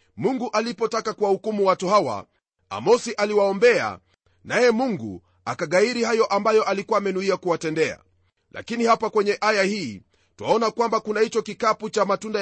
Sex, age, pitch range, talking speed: male, 40-59, 175-225 Hz, 140 wpm